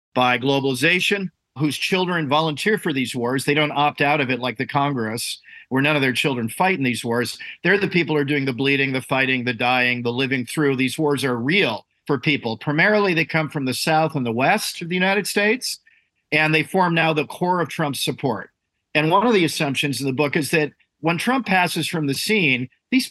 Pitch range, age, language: 130-165 Hz, 50-69, English